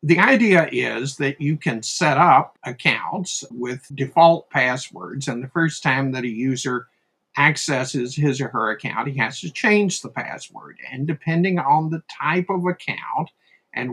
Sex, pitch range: male, 120-155 Hz